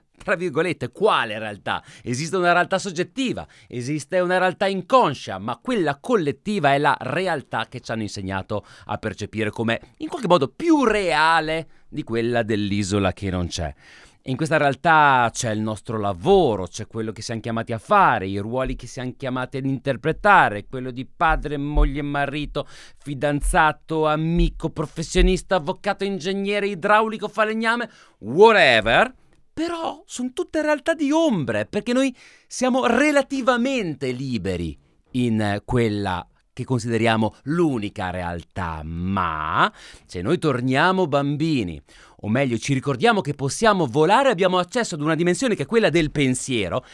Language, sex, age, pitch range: Italian, male, 30-49, 115-185 Hz